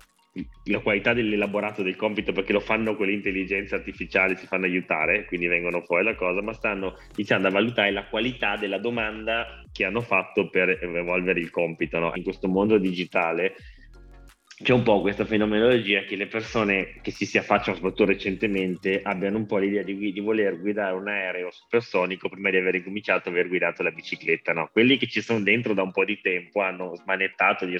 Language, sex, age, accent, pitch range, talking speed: Italian, male, 20-39, native, 90-105 Hz, 190 wpm